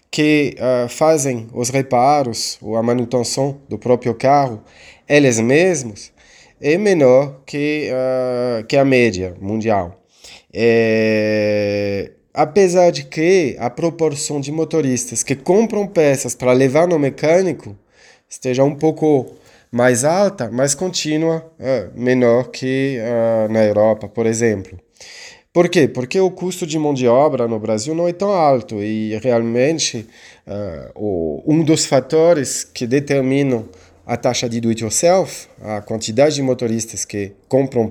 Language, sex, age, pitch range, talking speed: Italian, male, 20-39, 110-145 Hz, 130 wpm